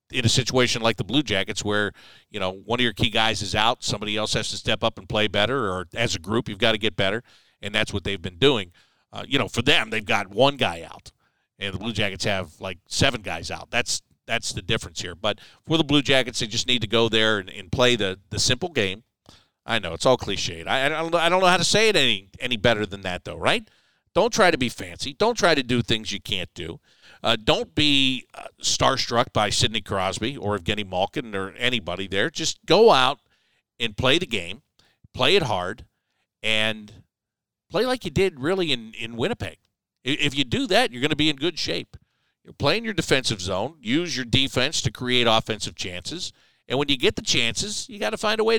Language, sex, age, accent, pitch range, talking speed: English, male, 50-69, American, 105-130 Hz, 230 wpm